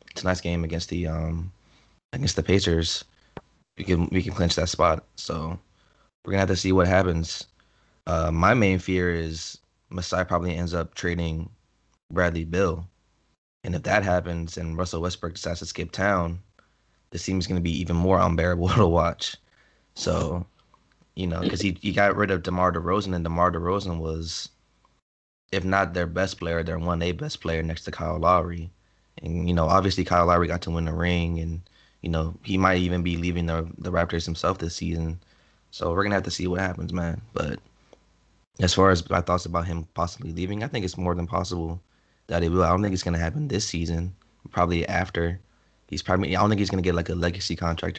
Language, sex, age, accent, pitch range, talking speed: English, male, 20-39, American, 85-95 Hz, 205 wpm